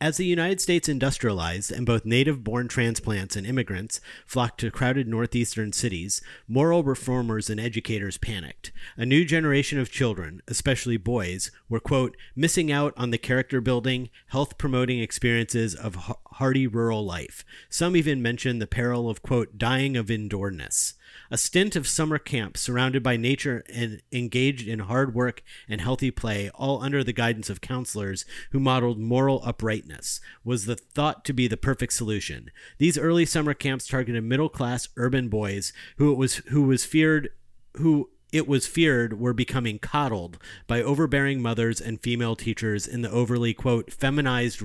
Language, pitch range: English, 110-135 Hz